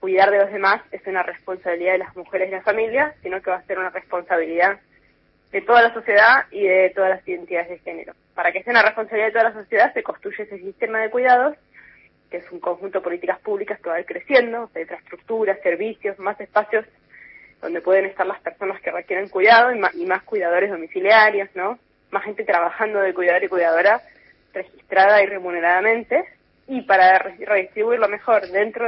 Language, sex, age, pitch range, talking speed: Spanish, female, 20-39, 185-230 Hz, 195 wpm